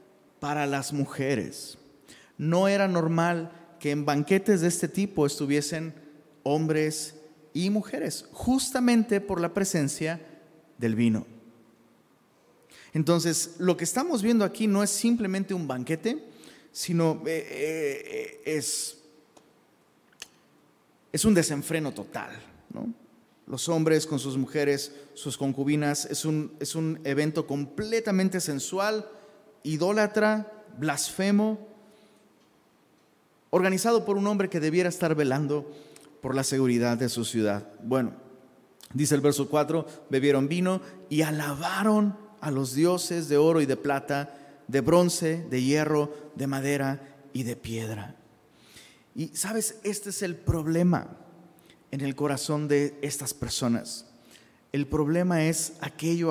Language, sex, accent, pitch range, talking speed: Spanish, male, Mexican, 140-185 Hz, 120 wpm